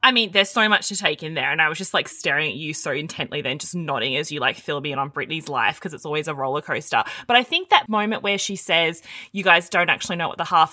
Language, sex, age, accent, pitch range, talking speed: English, female, 20-39, Australian, 165-195 Hz, 295 wpm